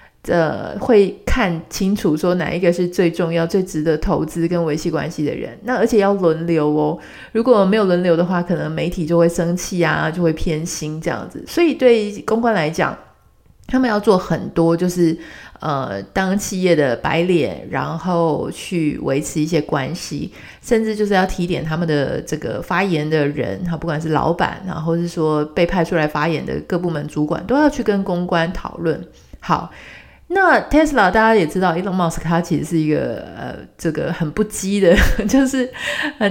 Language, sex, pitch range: Chinese, female, 160-200 Hz